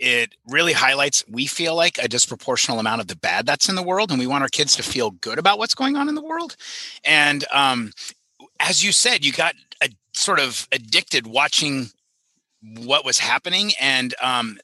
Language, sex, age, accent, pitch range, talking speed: English, male, 30-49, American, 115-145 Hz, 195 wpm